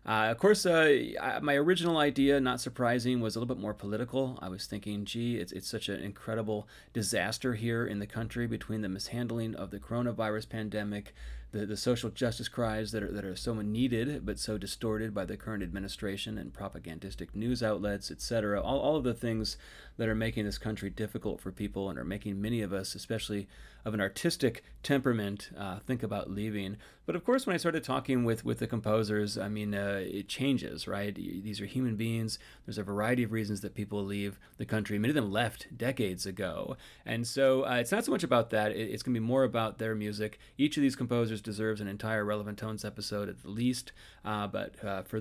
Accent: American